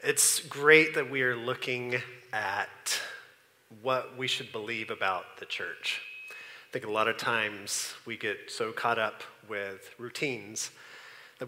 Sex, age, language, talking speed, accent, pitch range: male, 30-49, English, 145 wpm, American, 130-185 Hz